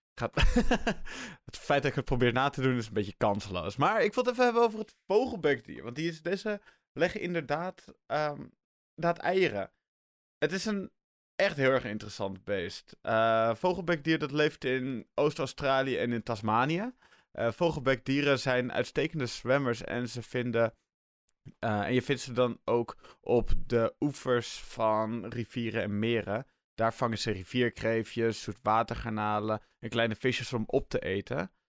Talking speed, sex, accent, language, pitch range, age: 155 wpm, male, Dutch, Dutch, 110-140 Hz, 20-39